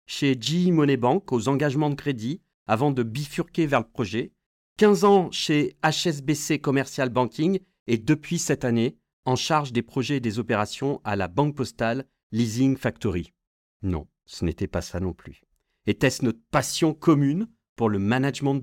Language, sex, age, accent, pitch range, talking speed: French, male, 40-59, French, 115-165 Hz, 165 wpm